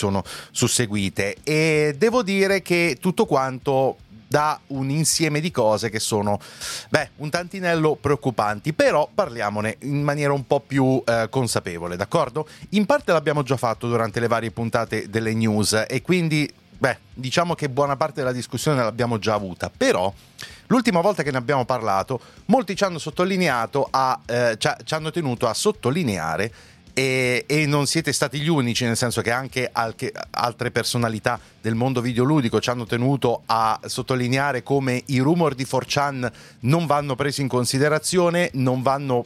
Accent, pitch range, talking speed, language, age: native, 115-145 Hz, 155 wpm, Italian, 30-49